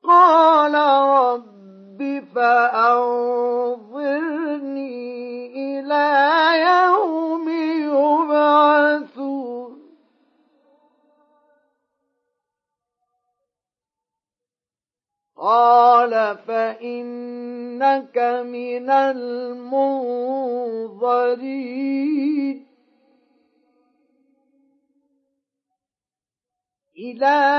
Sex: male